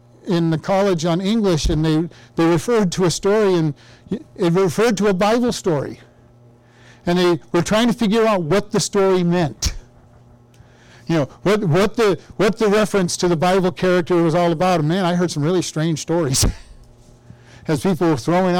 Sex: male